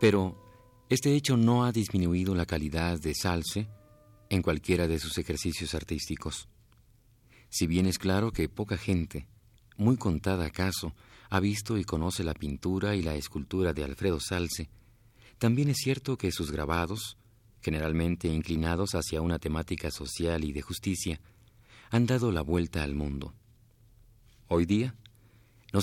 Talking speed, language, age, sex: 145 wpm, Spanish, 40-59, male